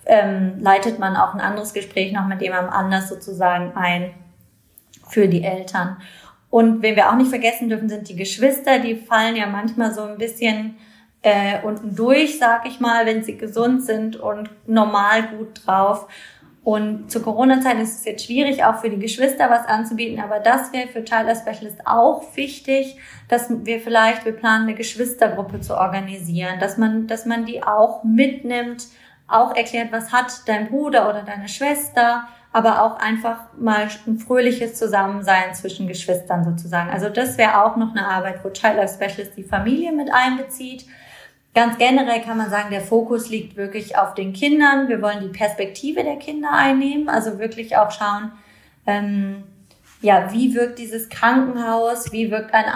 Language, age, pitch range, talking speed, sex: German, 20-39, 200-235 Hz, 170 wpm, female